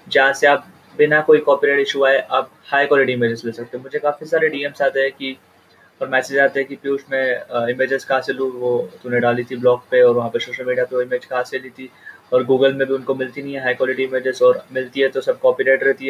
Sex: male